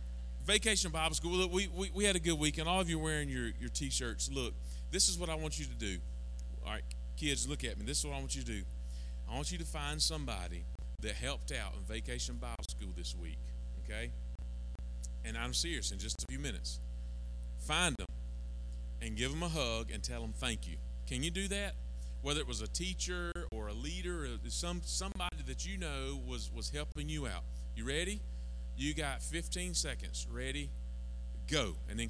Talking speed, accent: 205 wpm, American